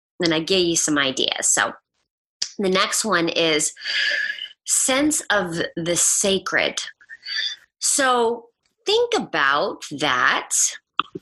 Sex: female